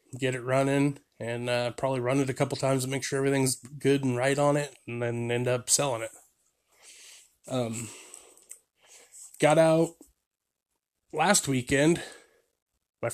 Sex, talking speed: male, 145 wpm